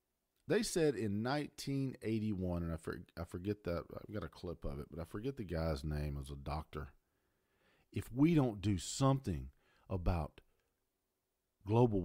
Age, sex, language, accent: 40-59, male, English, American